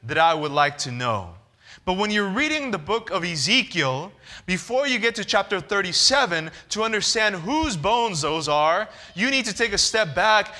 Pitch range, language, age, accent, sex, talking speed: 165-225 Hz, English, 20-39, American, male, 185 wpm